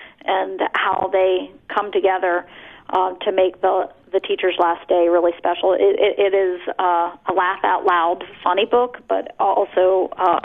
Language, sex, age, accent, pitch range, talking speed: English, female, 40-59, American, 185-215 Hz, 150 wpm